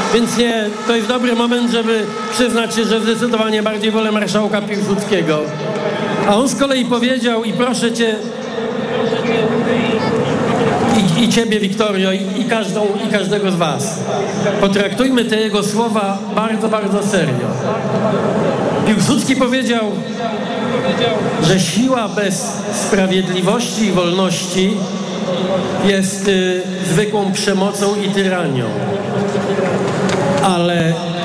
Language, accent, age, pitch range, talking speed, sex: Polish, native, 50-69, 185-225 Hz, 110 wpm, male